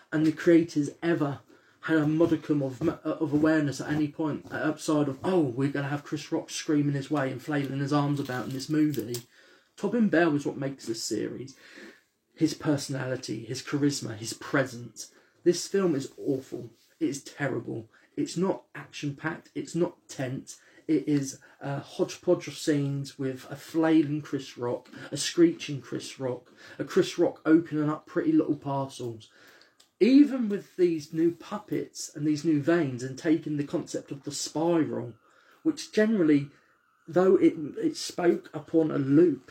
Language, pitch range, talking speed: English, 140-170 Hz, 165 wpm